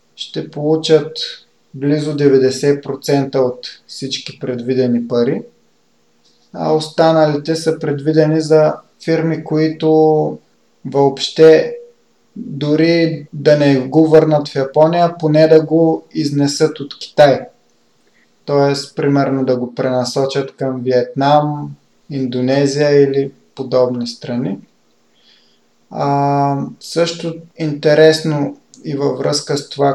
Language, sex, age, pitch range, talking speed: Bulgarian, male, 30-49, 130-160 Hz, 95 wpm